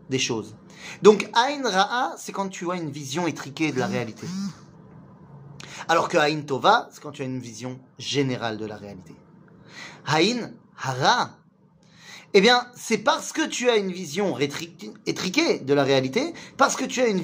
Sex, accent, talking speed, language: male, French, 170 wpm, French